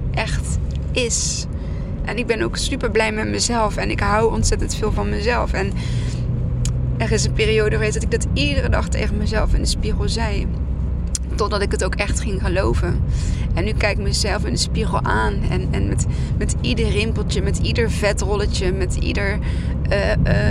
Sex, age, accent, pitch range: female, 20-39, Dutch, 65-85 Hz